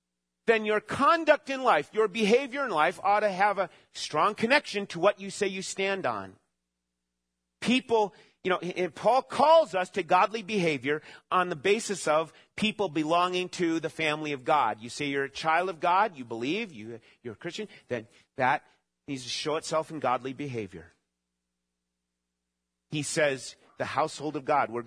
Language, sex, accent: English, male, American